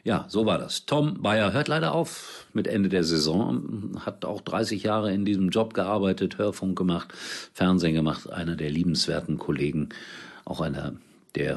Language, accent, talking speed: German, German, 165 wpm